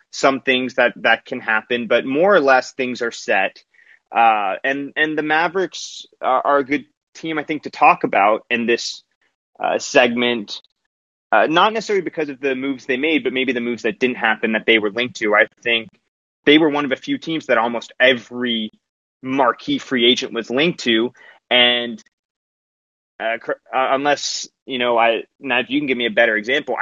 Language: English